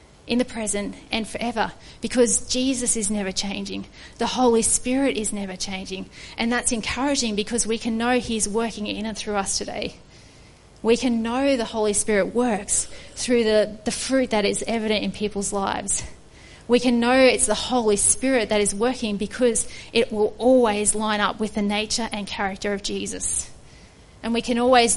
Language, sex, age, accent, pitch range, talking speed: English, female, 30-49, Australian, 210-245 Hz, 180 wpm